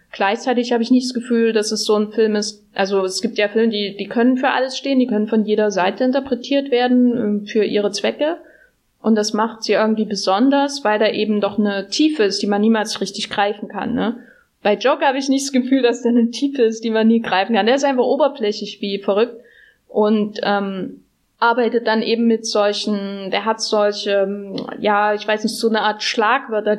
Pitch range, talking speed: 205-245 Hz, 210 wpm